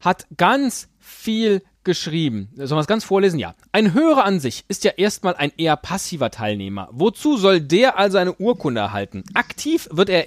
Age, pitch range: 30-49, 150-235 Hz